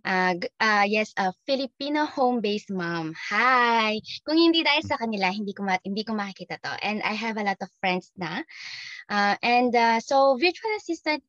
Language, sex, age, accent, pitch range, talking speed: Filipino, female, 20-39, native, 200-265 Hz, 165 wpm